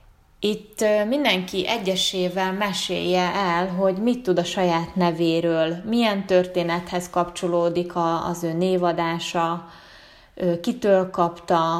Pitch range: 170-185 Hz